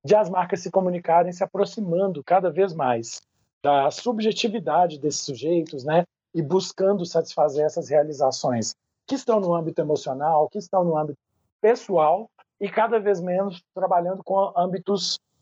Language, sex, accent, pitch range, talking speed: Portuguese, male, Brazilian, 150-190 Hz, 145 wpm